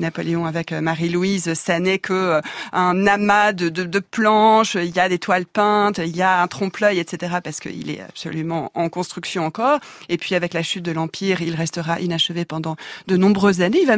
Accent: French